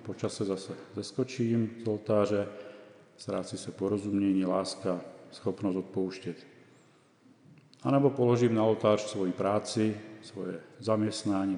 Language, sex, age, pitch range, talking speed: Czech, male, 40-59, 95-120 Hz, 105 wpm